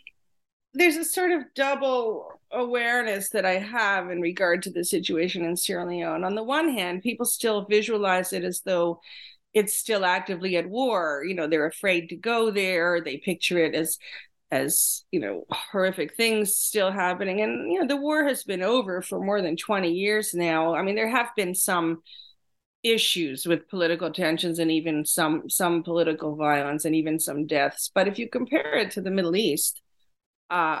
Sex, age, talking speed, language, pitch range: female, 40-59, 185 wpm, English, 165-220 Hz